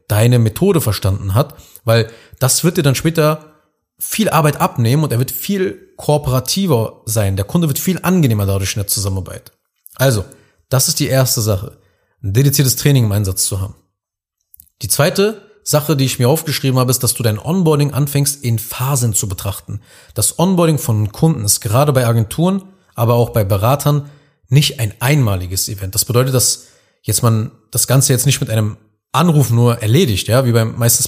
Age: 30-49